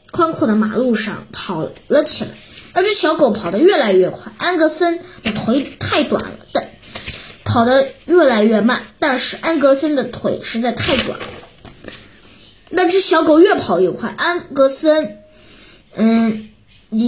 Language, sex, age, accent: Chinese, female, 20-39, native